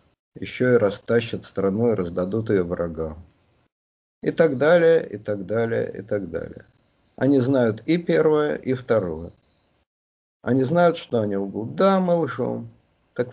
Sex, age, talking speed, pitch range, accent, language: male, 50-69, 145 wpm, 95-130 Hz, native, Russian